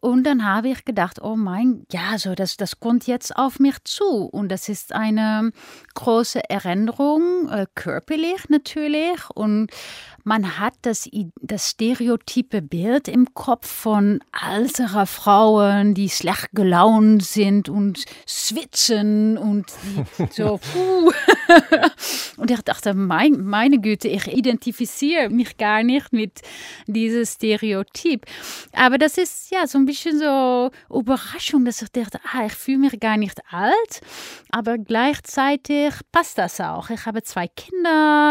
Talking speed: 140 wpm